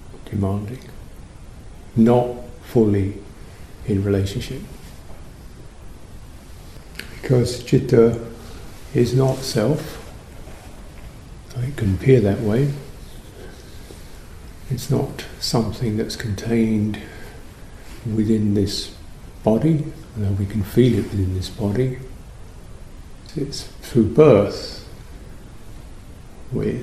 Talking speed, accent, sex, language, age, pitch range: 75 wpm, British, male, English, 50-69, 100-120 Hz